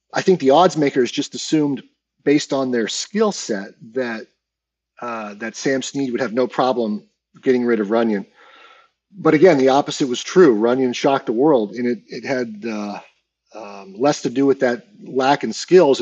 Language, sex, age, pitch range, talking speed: English, male, 40-59, 115-140 Hz, 180 wpm